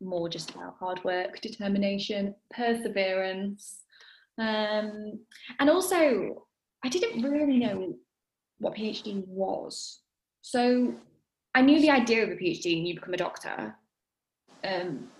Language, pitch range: English, 185-230 Hz